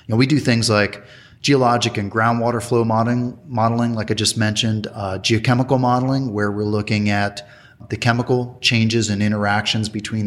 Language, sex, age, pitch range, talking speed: English, male, 30-49, 105-120 Hz, 175 wpm